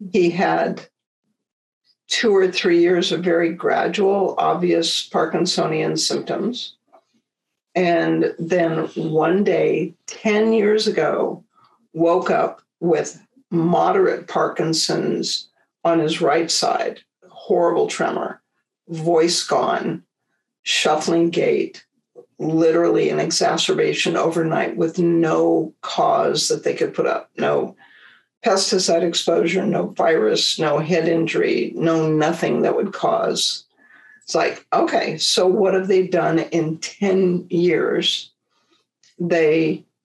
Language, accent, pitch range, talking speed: English, American, 165-215 Hz, 105 wpm